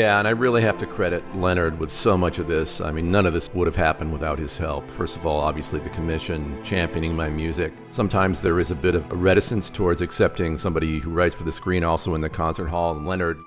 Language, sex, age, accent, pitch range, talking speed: English, male, 40-59, American, 80-100 Hz, 240 wpm